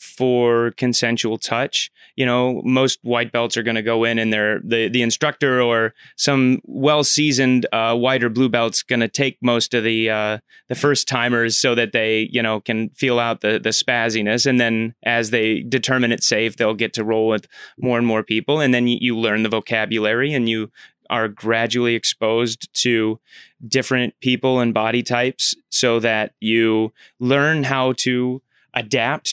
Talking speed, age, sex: 180 wpm, 30-49, male